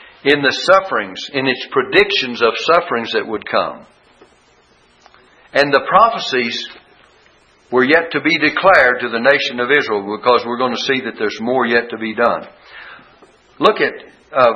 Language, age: English, 60-79